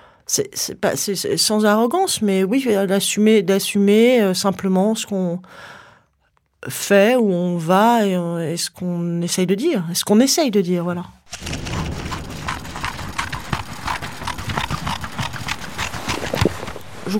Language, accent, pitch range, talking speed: French, French, 185-220 Hz, 115 wpm